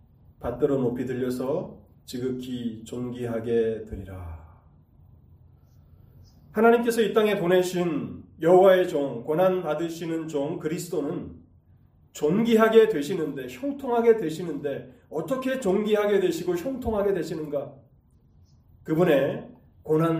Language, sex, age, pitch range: Korean, male, 30-49, 115-180 Hz